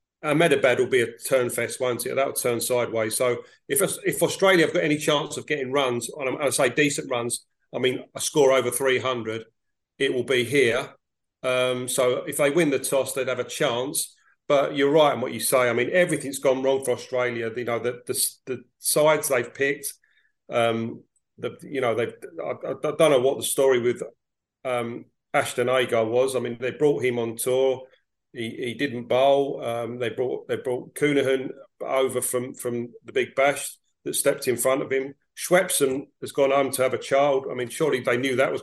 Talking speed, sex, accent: 205 wpm, male, British